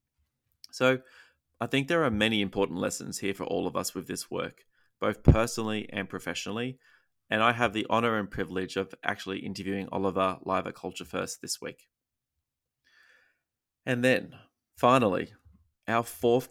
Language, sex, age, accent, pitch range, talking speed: English, male, 20-39, Australian, 95-120 Hz, 155 wpm